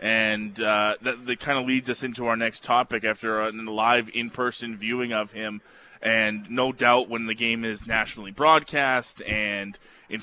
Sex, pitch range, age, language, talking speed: male, 110-130 Hz, 20-39, English, 175 wpm